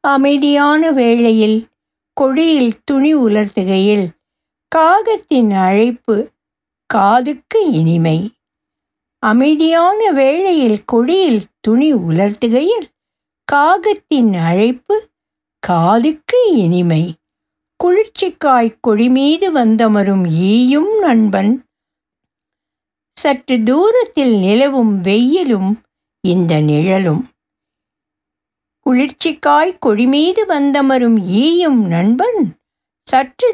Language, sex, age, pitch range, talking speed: Tamil, female, 60-79, 210-300 Hz, 65 wpm